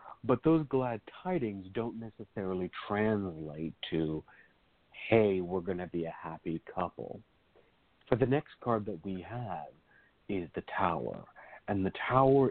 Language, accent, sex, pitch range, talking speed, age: English, American, male, 95-120 Hz, 140 wpm, 50-69